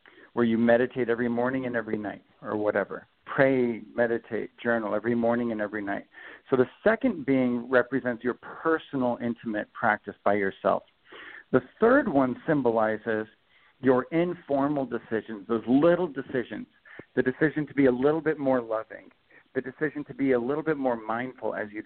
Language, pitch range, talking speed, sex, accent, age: English, 120-155 Hz, 160 wpm, male, American, 50-69